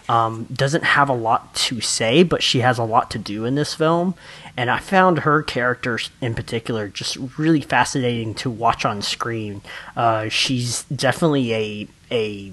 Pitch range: 115-145 Hz